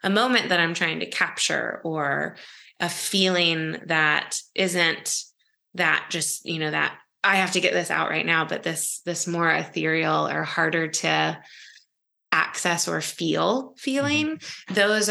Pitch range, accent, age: 160-205 Hz, American, 20-39